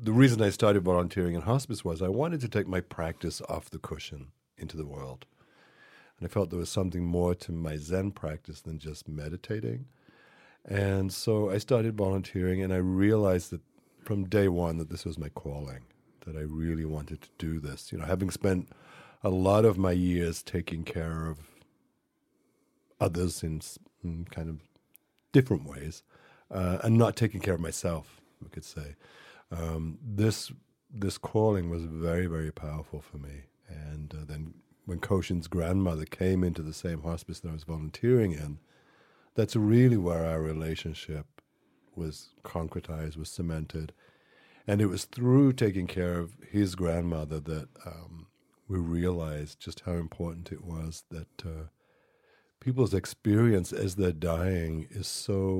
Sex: male